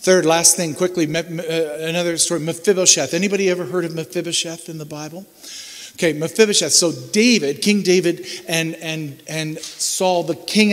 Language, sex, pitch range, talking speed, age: English, male, 145-185 Hz, 150 wpm, 50-69